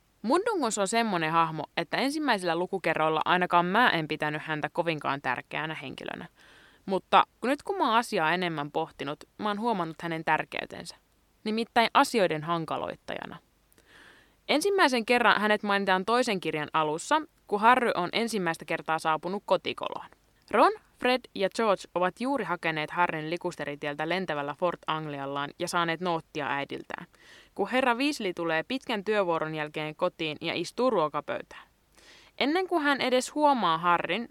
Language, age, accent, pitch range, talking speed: Finnish, 20-39, native, 165-240 Hz, 135 wpm